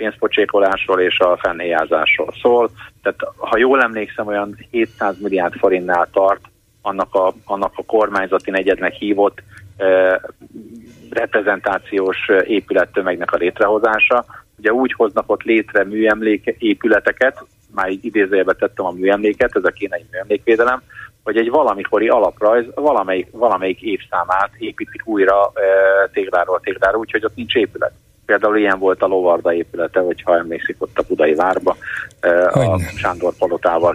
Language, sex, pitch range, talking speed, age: Hungarian, male, 95-120 Hz, 125 wpm, 30-49